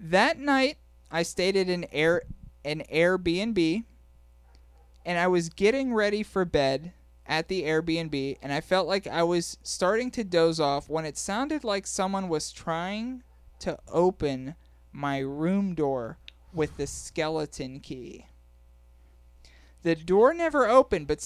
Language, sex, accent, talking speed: English, male, American, 140 wpm